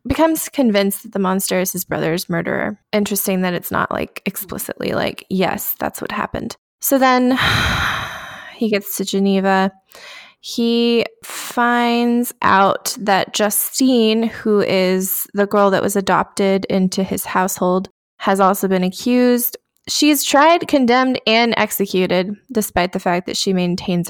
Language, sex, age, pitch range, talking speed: English, female, 20-39, 190-240 Hz, 140 wpm